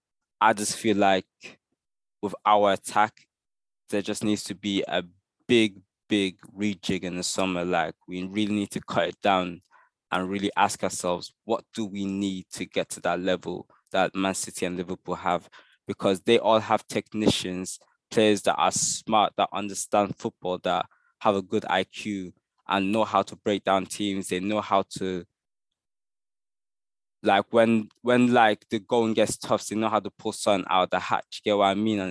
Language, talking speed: English, 185 wpm